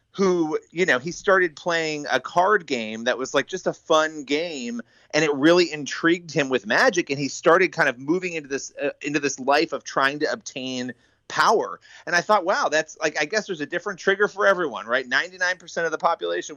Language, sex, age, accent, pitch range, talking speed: English, male, 30-49, American, 135-185 Hz, 220 wpm